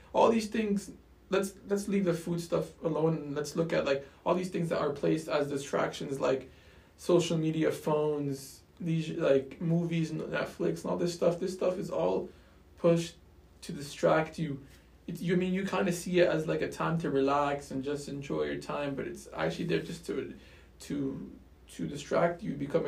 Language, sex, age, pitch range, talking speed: English, male, 20-39, 135-160 Hz, 190 wpm